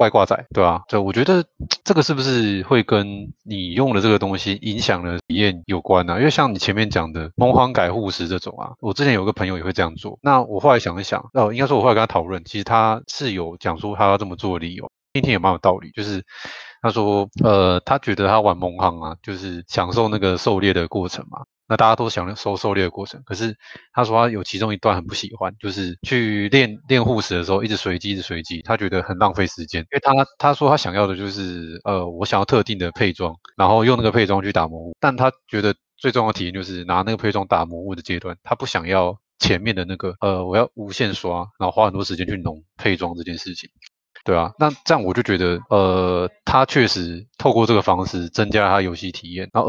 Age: 20-39